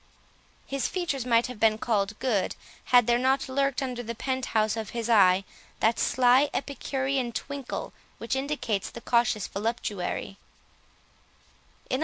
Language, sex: English, female